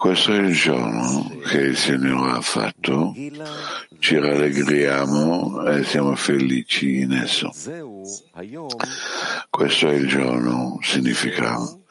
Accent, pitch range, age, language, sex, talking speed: native, 70-85 Hz, 60-79, Italian, male, 105 wpm